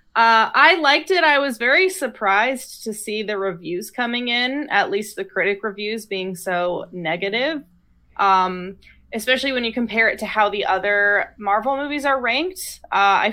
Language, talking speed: English, 170 wpm